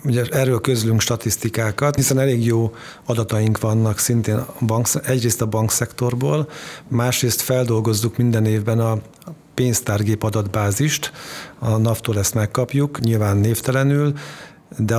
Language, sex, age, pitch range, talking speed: Hungarian, male, 50-69, 105-125 Hz, 105 wpm